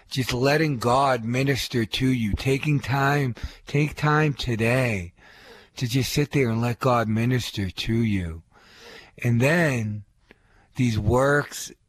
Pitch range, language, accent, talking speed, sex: 110-130 Hz, English, American, 125 wpm, male